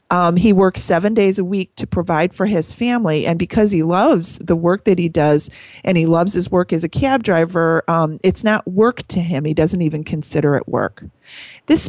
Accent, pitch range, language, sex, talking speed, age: American, 155-190 Hz, English, female, 215 wpm, 30-49